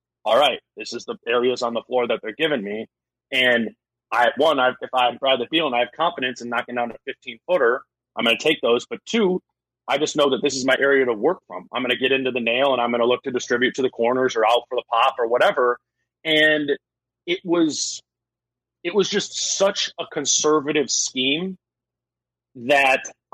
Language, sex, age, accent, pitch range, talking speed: English, male, 30-49, American, 125-150 Hz, 220 wpm